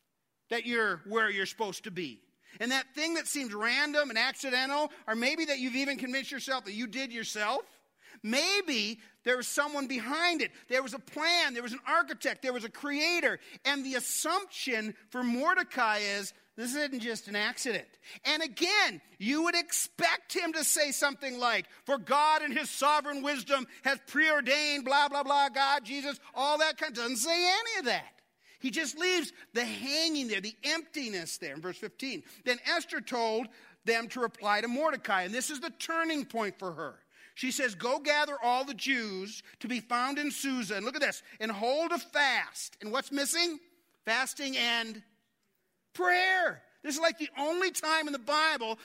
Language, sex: English, male